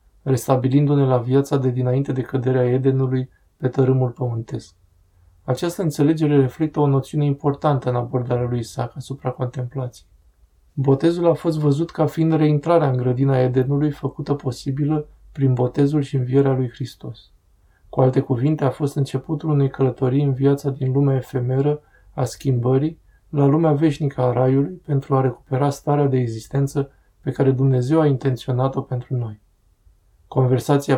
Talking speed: 145 wpm